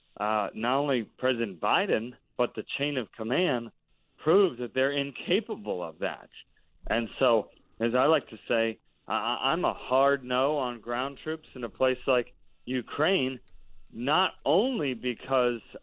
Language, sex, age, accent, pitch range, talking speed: English, male, 40-59, American, 115-140 Hz, 145 wpm